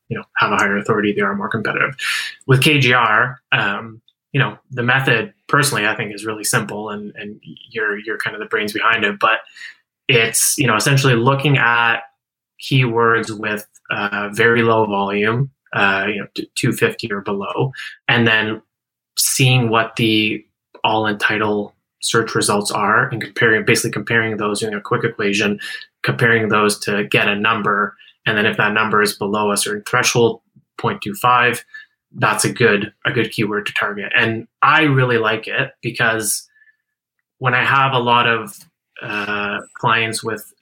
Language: English